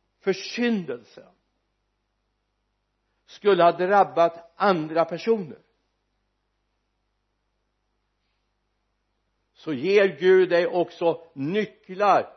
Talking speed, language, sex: 60 wpm, Swedish, male